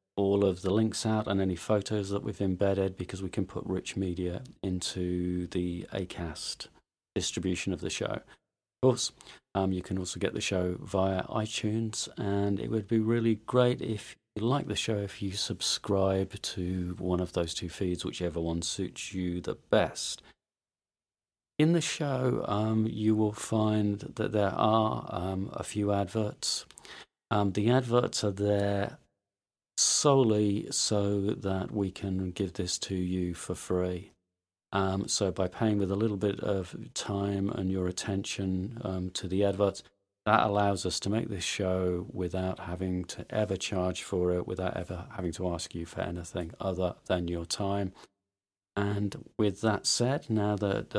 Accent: British